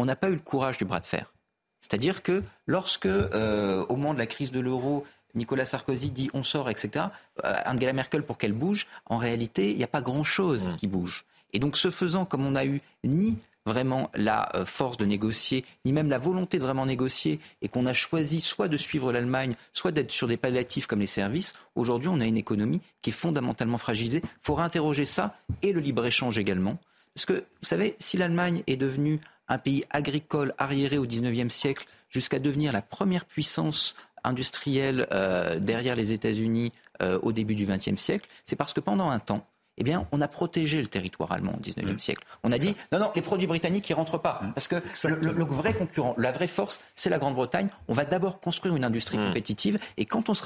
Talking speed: 210 wpm